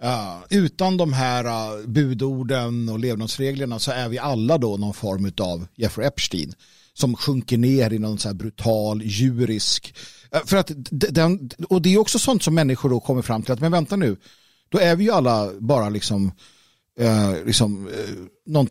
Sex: male